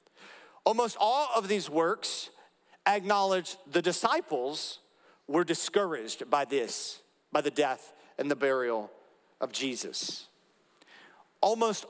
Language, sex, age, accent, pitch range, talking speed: English, male, 50-69, American, 155-210 Hz, 105 wpm